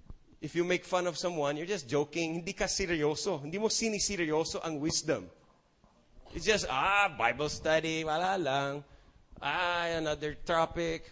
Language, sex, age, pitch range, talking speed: English, male, 30-49, 135-180 Hz, 145 wpm